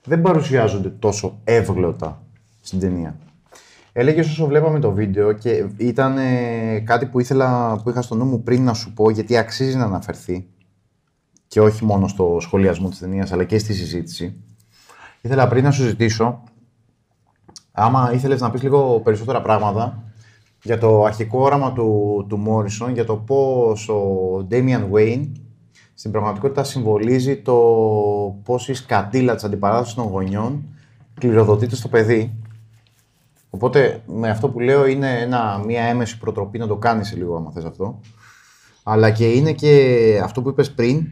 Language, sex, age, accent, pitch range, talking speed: Greek, male, 30-49, native, 105-130 Hz, 150 wpm